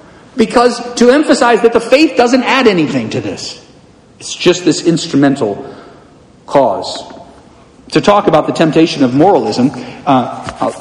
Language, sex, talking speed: English, male, 140 wpm